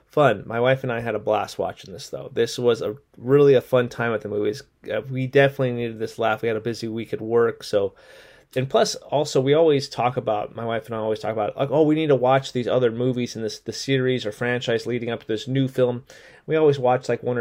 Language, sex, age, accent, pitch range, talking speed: English, male, 30-49, American, 105-130 Hz, 255 wpm